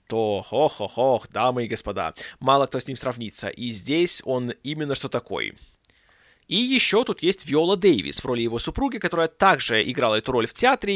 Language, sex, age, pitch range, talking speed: Russian, male, 20-39, 125-165 Hz, 180 wpm